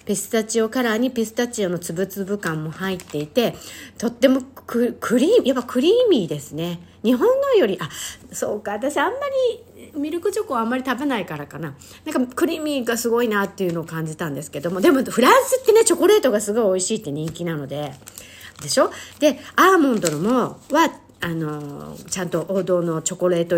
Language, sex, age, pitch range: Japanese, female, 50-69, 175-280 Hz